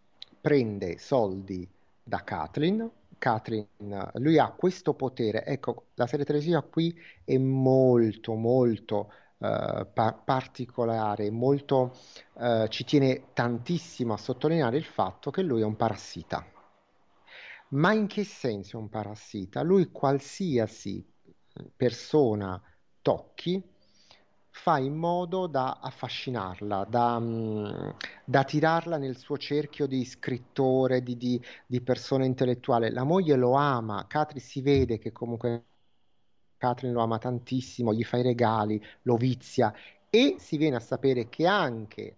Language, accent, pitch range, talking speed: Italian, native, 110-145 Hz, 120 wpm